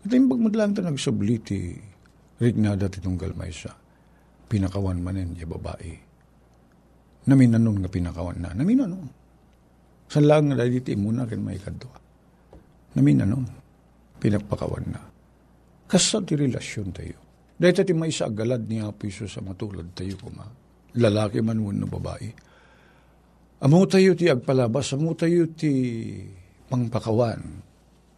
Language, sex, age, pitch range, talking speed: Filipino, male, 50-69, 100-160 Hz, 120 wpm